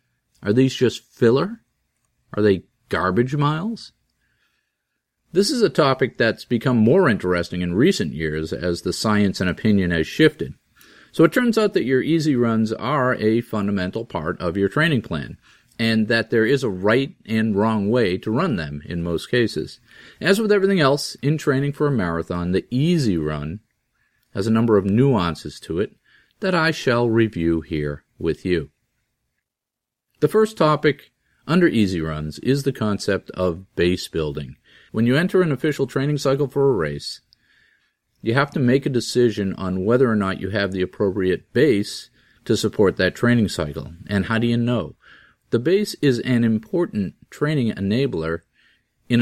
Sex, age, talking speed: male, 40-59, 170 wpm